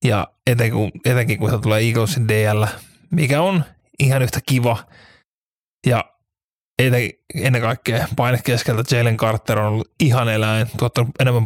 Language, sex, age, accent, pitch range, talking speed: Finnish, male, 20-39, native, 110-130 Hz, 140 wpm